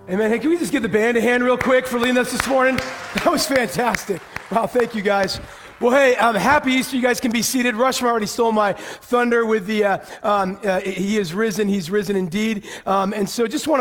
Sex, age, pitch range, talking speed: male, 40-59, 205-235 Hz, 240 wpm